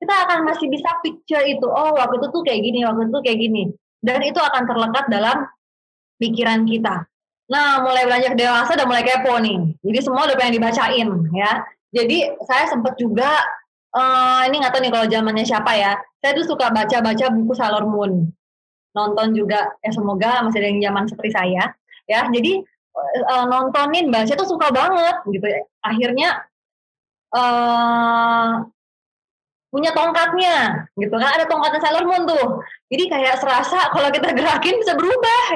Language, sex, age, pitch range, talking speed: Indonesian, female, 20-39, 220-285 Hz, 160 wpm